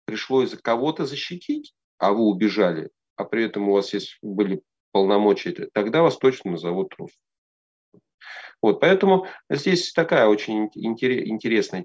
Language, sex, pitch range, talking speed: Russian, male, 100-130 Hz, 130 wpm